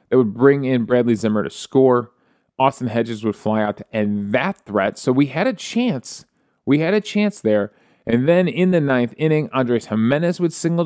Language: English